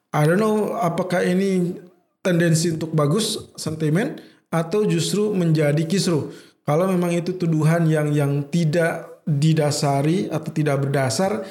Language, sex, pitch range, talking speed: Indonesian, male, 145-180 Hz, 125 wpm